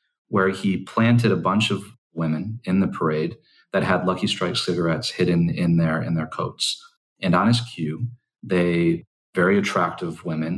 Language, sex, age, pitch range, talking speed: English, male, 40-59, 80-110 Hz, 160 wpm